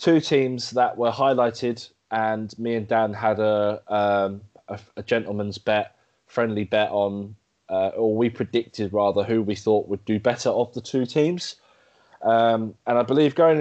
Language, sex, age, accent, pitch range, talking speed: English, male, 20-39, British, 110-130 Hz, 170 wpm